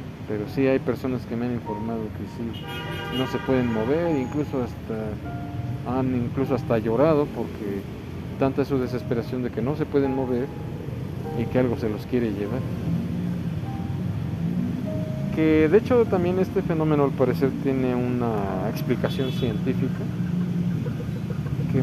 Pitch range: 115-145 Hz